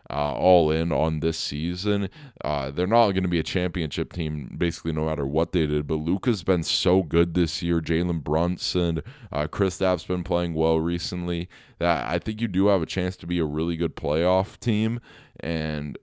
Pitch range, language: 80-100 Hz, English